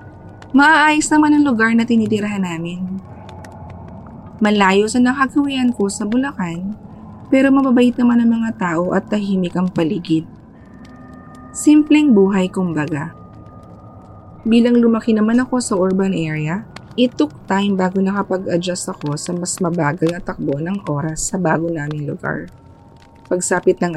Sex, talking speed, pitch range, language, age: female, 130 wpm, 160-215 Hz, Filipino, 20-39